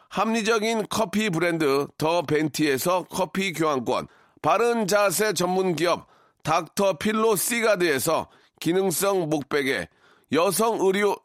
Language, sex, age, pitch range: Korean, male, 40-59, 170-215 Hz